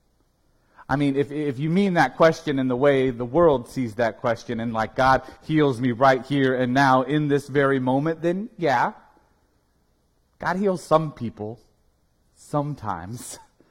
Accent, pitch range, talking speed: American, 100-145 Hz, 160 wpm